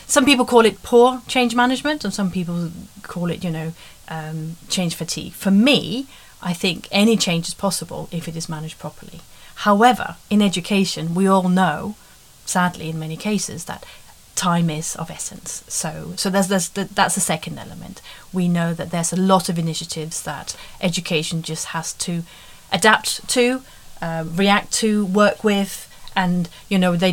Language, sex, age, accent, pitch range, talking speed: English, female, 30-49, British, 170-210 Hz, 170 wpm